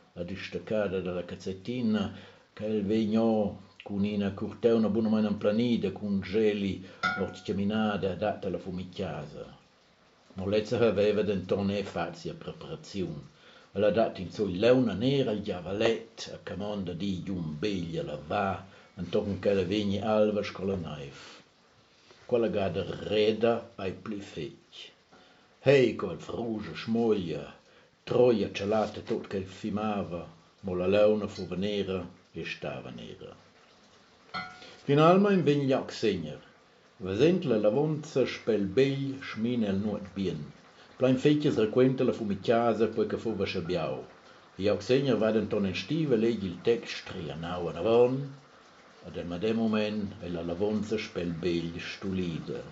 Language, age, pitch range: German, 60-79, 95-115 Hz